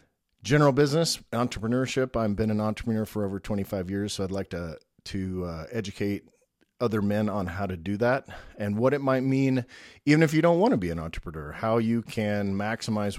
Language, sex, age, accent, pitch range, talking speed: English, male, 40-59, American, 95-120 Hz, 195 wpm